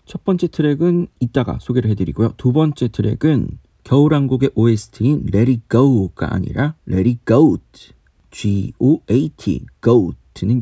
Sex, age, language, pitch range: male, 40-59, Korean, 110-160 Hz